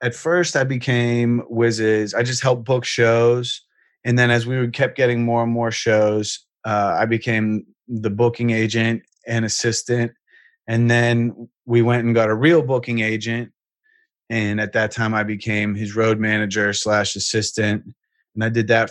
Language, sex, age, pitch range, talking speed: English, male, 30-49, 105-115 Hz, 170 wpm